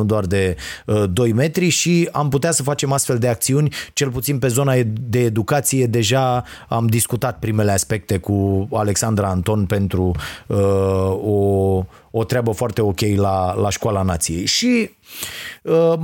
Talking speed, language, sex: 155 wpm, Romanian, male